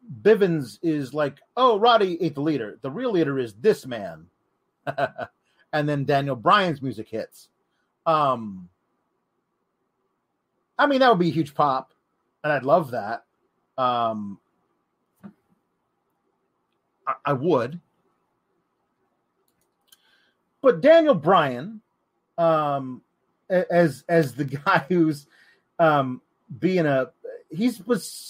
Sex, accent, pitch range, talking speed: male, American, 150-230 Hz, 110 wpm